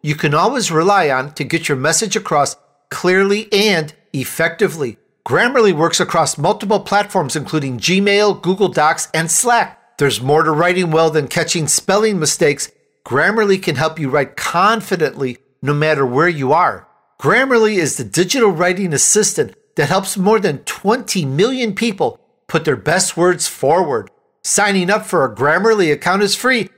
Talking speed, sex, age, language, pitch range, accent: 155 wpm, male, 50-69, English, 155-210 Hz, American